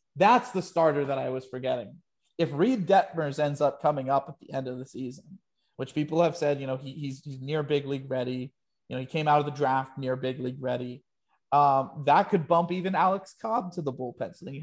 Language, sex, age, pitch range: English, male, 30-49, 135-170 Hz